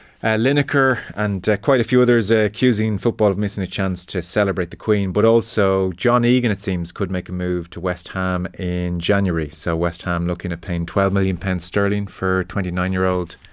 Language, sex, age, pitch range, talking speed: English, male, 30-49, 90-105 Hz, 200 wpm